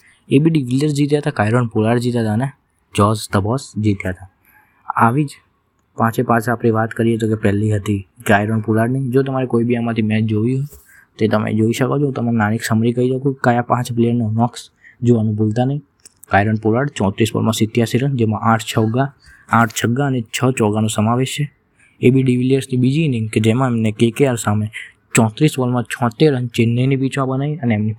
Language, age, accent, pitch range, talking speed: Gujarati, 20-39, native, 110-130 Hz, 150 wpm